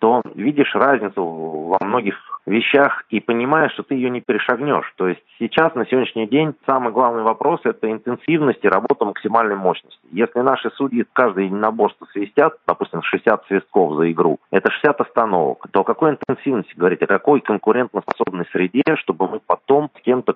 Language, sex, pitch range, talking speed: Russian, male, 95-130 Hz, 170 wpm